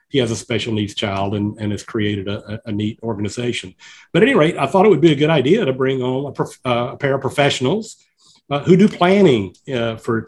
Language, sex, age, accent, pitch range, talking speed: English, male, 50-69, American, 115-140 Hz, 245 wpm